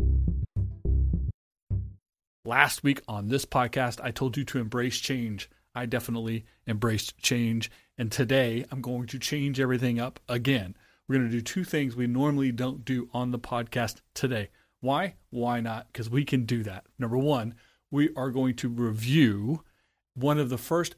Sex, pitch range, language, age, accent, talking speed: male, 110-130 Hz, English, 30-49, American, 165 wpm